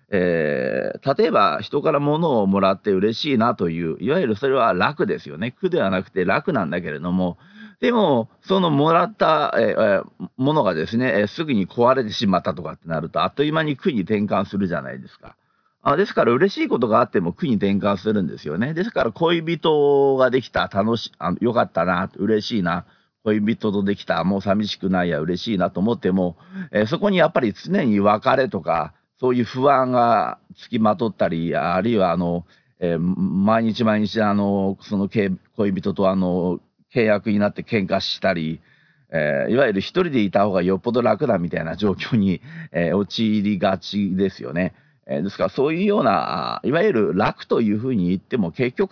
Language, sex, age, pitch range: Japanese, male, 50-69, 95-145 Hz